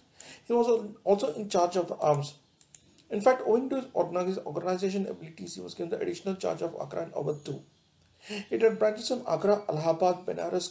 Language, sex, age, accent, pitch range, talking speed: English, male, 40-59, Indian, 150-200 Hz, 180 wpm